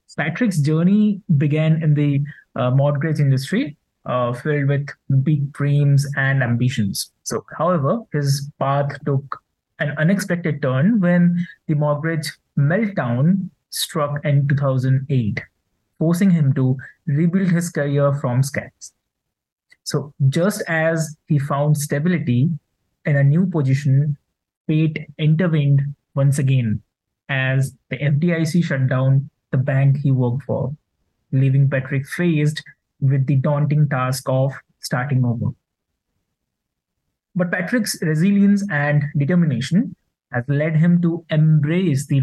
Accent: Indian